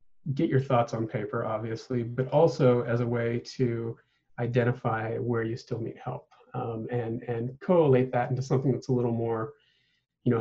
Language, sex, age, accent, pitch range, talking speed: English, male, 40-59, American, 120-135 Hz, 180 wpm